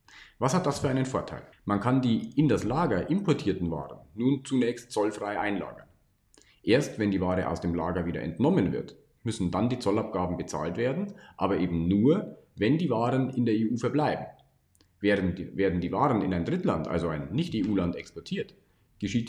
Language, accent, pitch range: German, German, 95-130 Hz